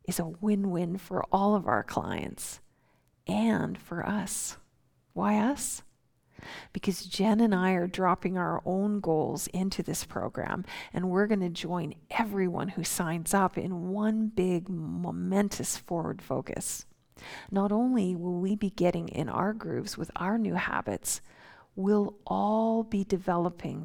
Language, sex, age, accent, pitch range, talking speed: English, female, 50-69, American, 175-205 Hz, 140 wpm